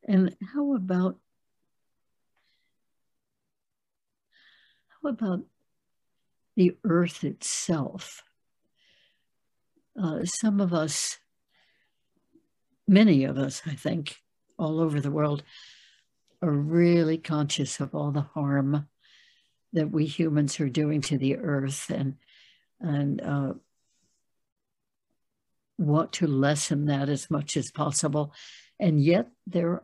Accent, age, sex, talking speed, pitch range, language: American, 60-79, female, 100 wpm, 150-180 Hz, English